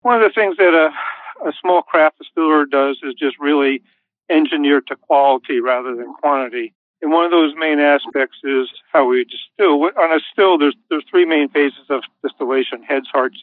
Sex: male